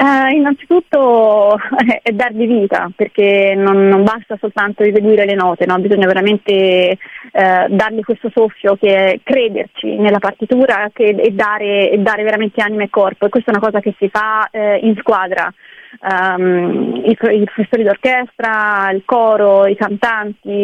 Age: 20-39